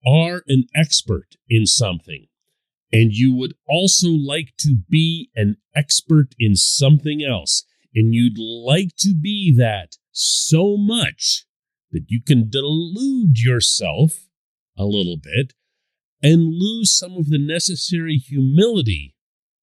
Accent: American